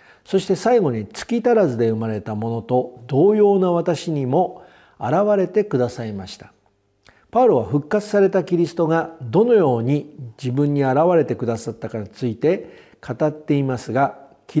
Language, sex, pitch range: Japanese, male, 115-195 Hz